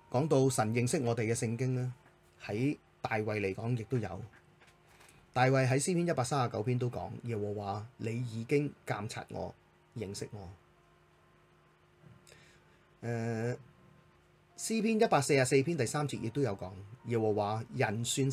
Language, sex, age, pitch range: Chinese, male, 30-49, 105-140 Hz